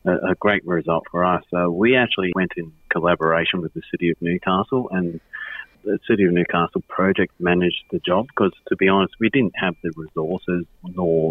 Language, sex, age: English, male, 40-59